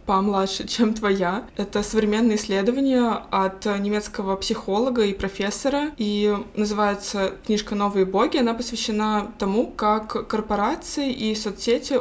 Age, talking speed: 20-39, 120 wpm